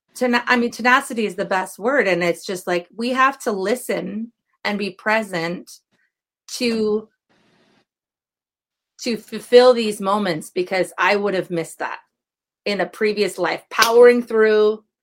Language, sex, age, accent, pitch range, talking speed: English, female, 30-49, American, 175-230 Hz, 140 wpm